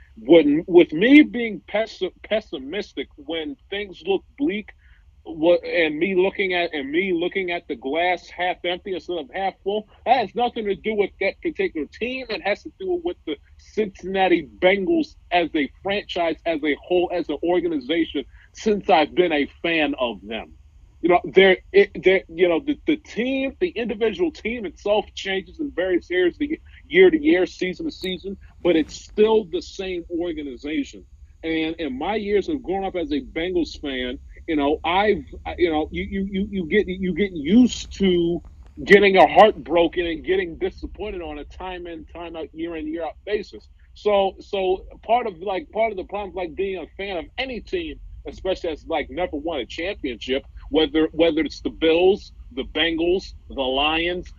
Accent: American